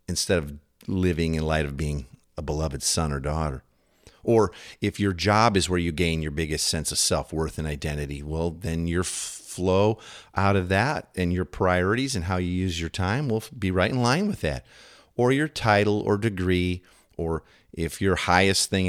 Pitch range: 85-110 Hz